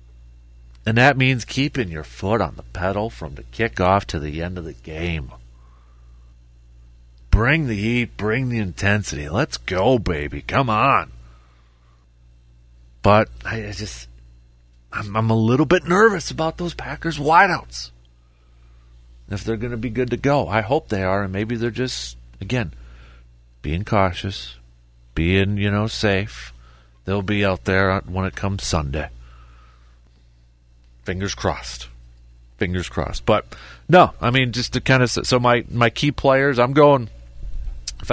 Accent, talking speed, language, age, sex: American, 145 wpm, English, 40-59, male